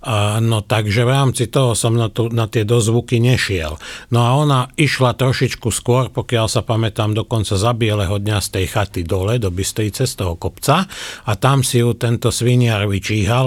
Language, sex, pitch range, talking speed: Slovak, male, 105-125 Hz, 185 wpm